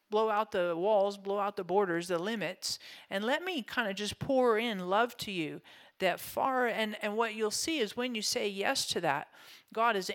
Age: 50-69